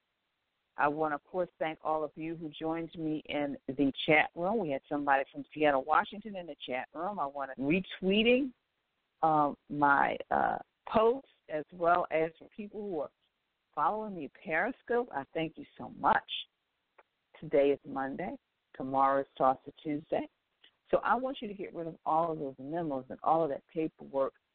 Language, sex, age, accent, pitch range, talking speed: English, female, 50-69, American, 140-195 Hz, 185 wpm